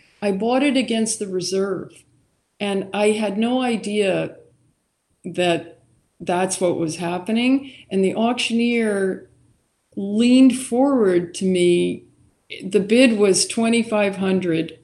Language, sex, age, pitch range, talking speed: English, female, 50-69, 175-225 Hz, 110 wpm